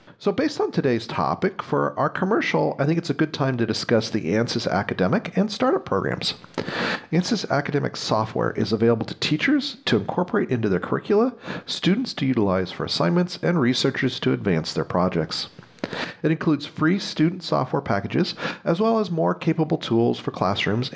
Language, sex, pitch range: English, male, 115-180 Hz